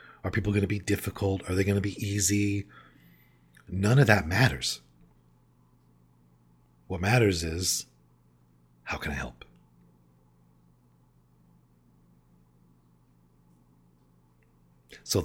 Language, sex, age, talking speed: English, male, 50-69, 95 wpm